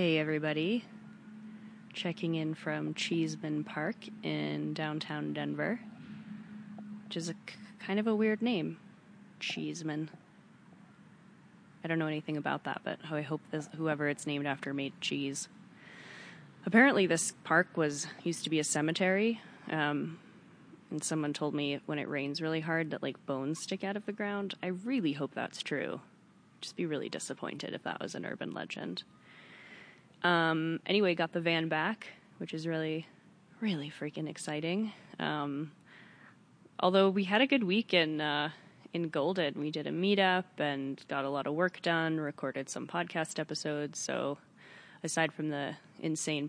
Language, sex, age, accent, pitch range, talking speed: English, female, 20-39, American, 150-195 Hz, 155 wpm